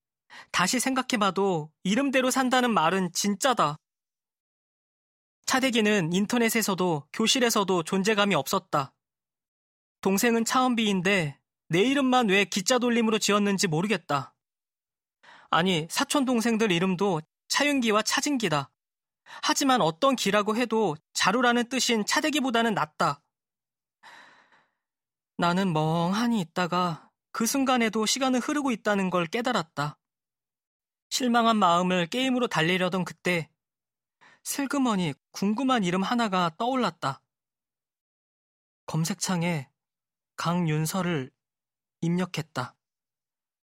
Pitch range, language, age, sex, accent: 170-235 Hz, Korean, 20-39, male, native